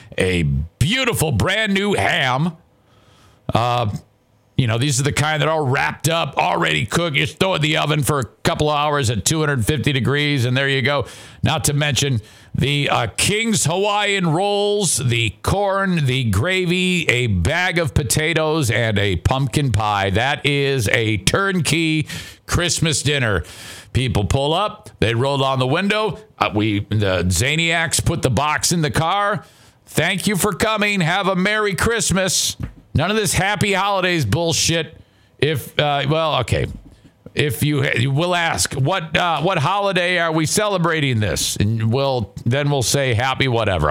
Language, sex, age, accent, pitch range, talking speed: English, male, 50-69, American, 105-165 Hz, 160 wpm